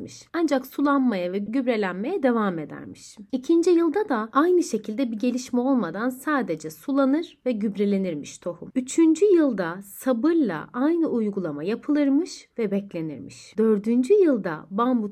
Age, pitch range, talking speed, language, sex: 30-49, 185-250 Hz, 120 wpm, Turkish, female